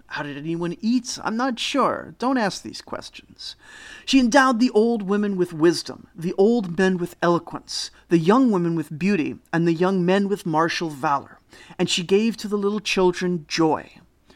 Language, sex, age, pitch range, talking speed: English, male, 30-49, 160-215 Hz, 180 wpm